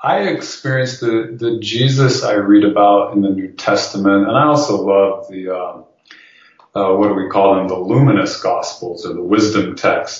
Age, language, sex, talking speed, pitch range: 30-49, English, male, 180 wpm, 95-115 Hz